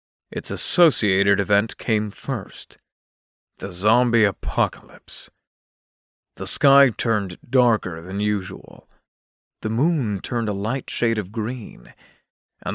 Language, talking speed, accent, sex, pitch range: English, 110 wpm, American, male, 100-135 Hz